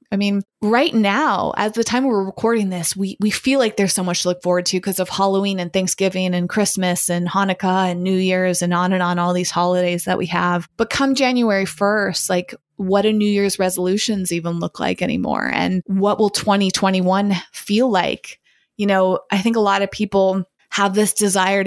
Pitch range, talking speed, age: 185-210 Hz, 210 wpm, 20-39